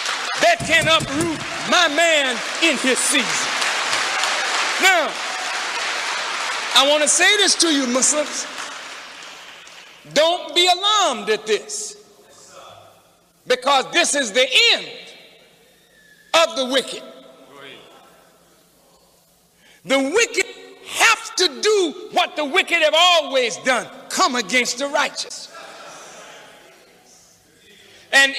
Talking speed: 95 wpm